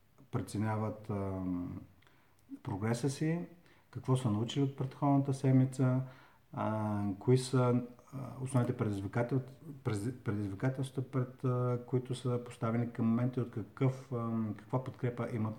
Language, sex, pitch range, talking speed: Bulgarian, male, 105-125 Hz, 110 wpm